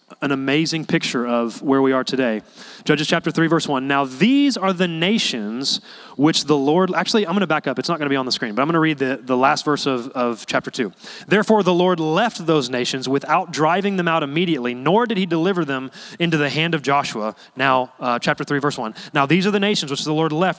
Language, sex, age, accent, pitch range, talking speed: English, male, 30-49, American, 140-185 Hz, 245 wpm